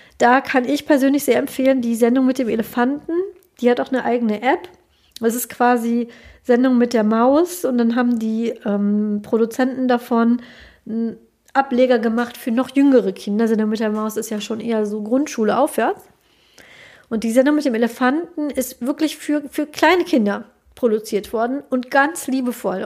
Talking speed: 175 wpm